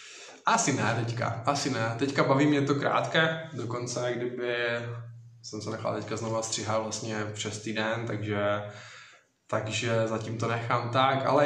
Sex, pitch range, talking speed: male, 110-135 Hz, 145 wpm